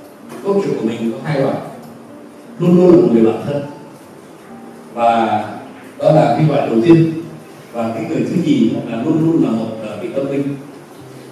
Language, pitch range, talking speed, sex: Vietnamese, 115-160 Hz, 175 wpm, male